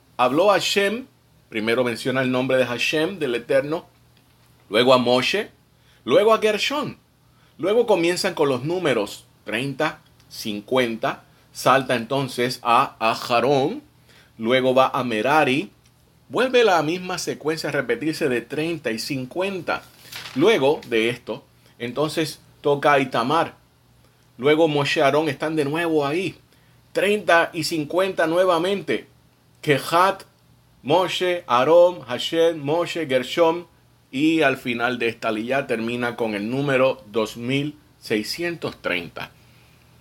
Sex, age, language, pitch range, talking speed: male, 30-49, Spanish, 120-165 Hz, 115 wpm